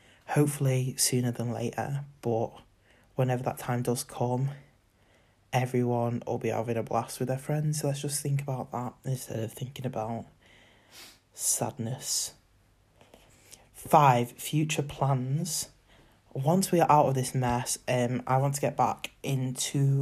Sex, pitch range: male, 125-145 Hz